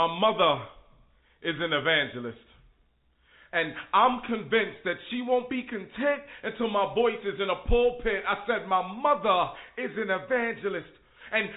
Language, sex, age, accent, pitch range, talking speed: English, male, 30-49, American, 220-275 Hz, 145 wpm